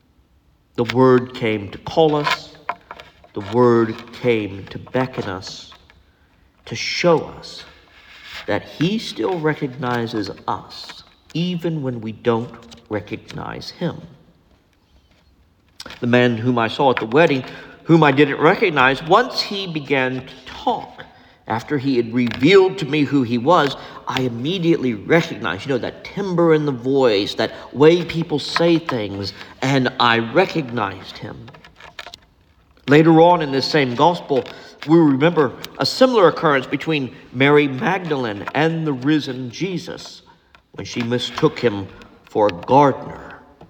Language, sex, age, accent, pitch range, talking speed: English, male, 50-69, American, 100-150 Hz, 130 wpm